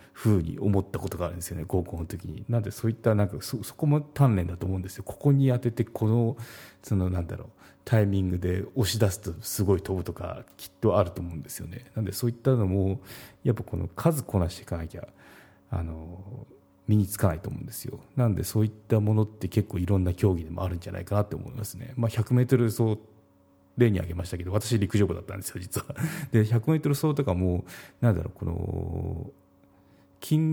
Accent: native